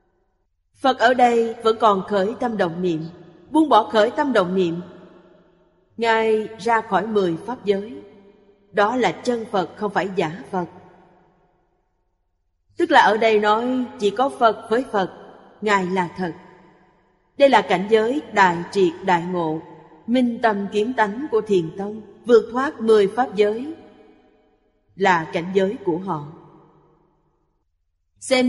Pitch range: 180-230 Hz